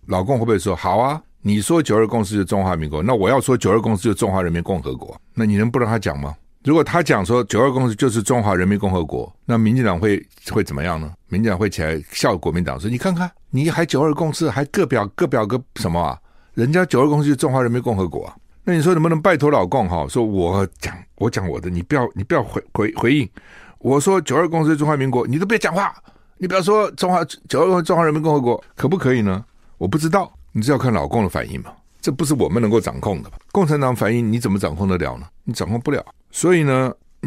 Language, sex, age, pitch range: Chinese, male, 60-79, 95-145 Hz